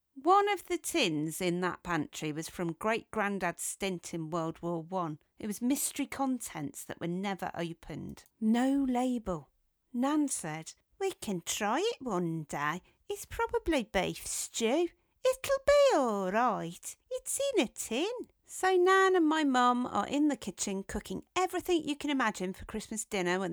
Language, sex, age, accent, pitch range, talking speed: English, female, 40-59, British, 185-280 Hz, 160 wpm